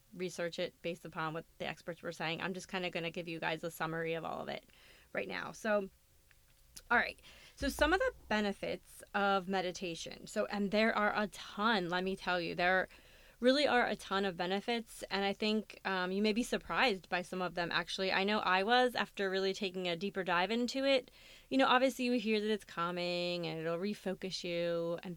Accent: American